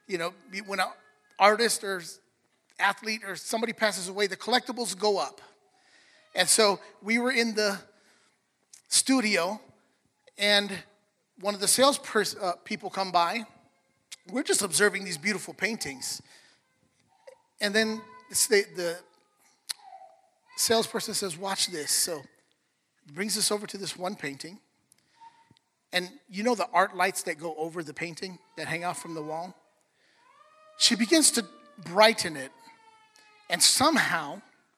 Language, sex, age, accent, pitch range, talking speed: English, male, 30-49, American, 185-250 Hz, 140 wpm